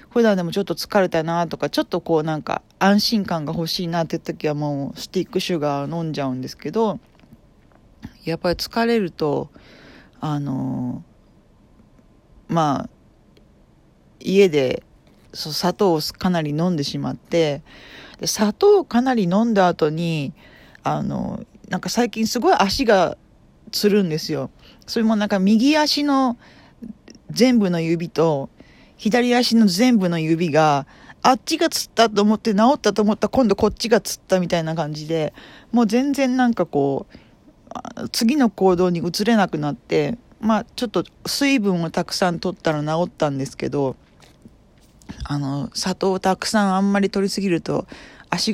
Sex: female